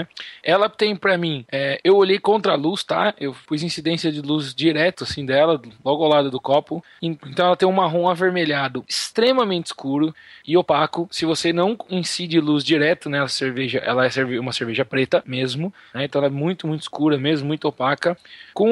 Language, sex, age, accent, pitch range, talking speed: Portuguese, male, 20-39, Brazilian, 140-180 Hz, 190 wpm